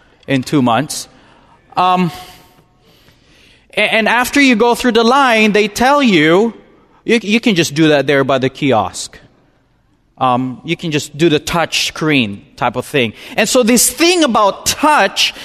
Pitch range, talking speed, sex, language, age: 165-230 Hz, 165 wpm, male, English, 20-39